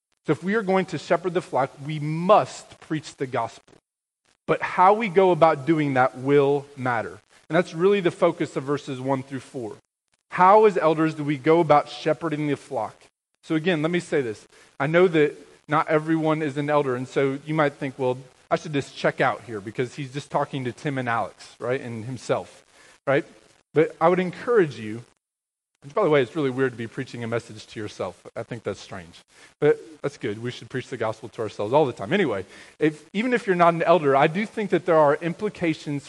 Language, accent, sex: English, American, male